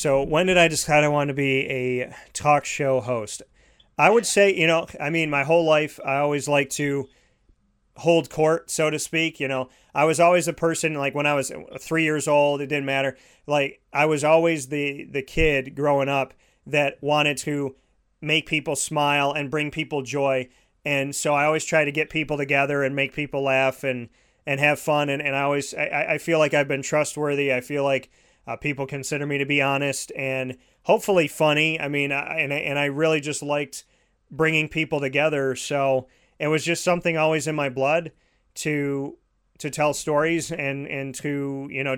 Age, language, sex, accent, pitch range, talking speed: 30-49, English, male, American, 135-155 Hz, 195 wpm